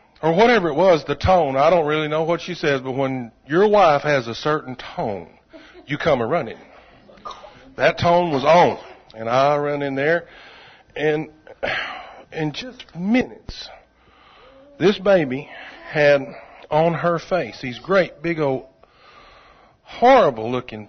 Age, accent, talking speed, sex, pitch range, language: 50-69, American, 145 wpm, male, 130-170 Hz, English